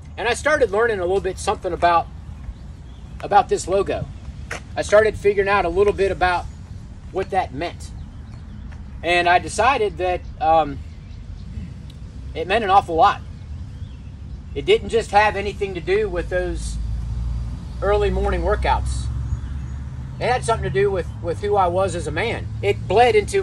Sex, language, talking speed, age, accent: male, English, 155 wpm, 30-49, American